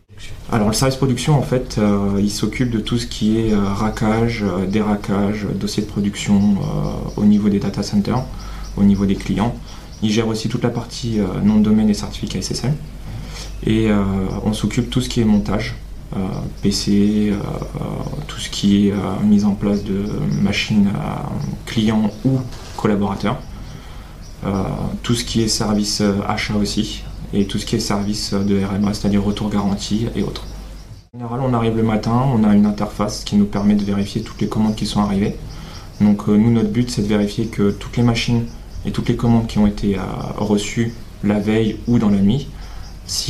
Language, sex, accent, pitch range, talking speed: French, male, French, 100-110 Hz, 190 wpm